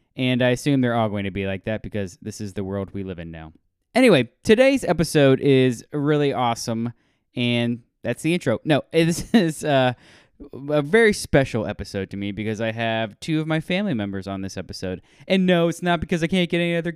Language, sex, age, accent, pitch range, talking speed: English, male, 20-39, American, 110-145 Hz, 210 wpm